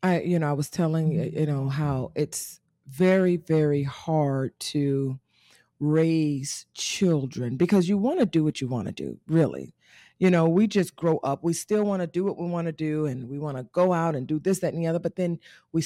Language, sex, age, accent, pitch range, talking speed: English, female, 40-59, American, 150-195 Hz, 225 wpm